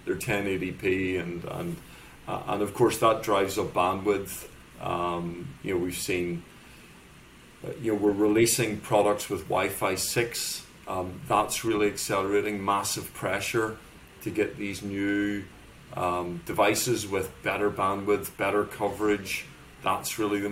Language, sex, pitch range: English, male, 90-105 Hz